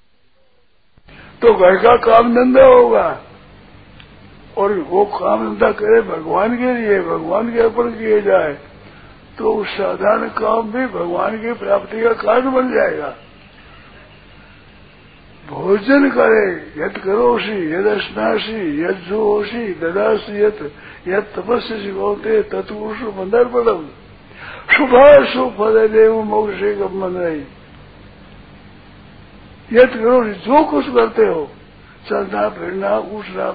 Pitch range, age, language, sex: 195-245 Hz, 60-79, Hindi, male